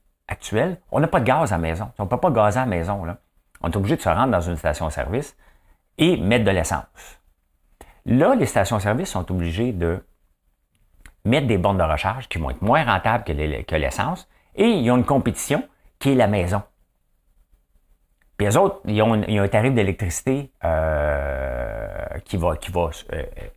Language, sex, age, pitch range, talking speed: English, male, 50-69, 80-105 Hz, 200 wpm